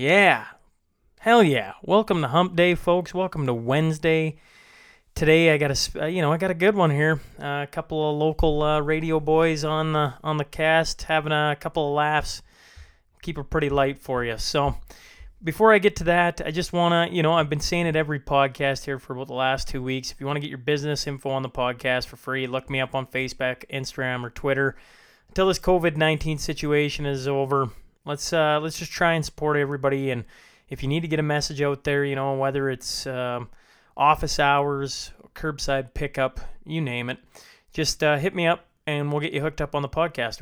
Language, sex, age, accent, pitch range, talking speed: English, male, 20-39, American, 130-155 Hz, 210 wpm